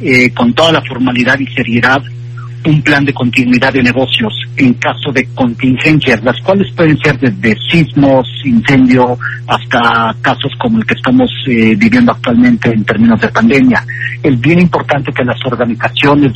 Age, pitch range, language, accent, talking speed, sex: 50-69, 120-135 Hz, Spanish, Mexican, 160 wpm, male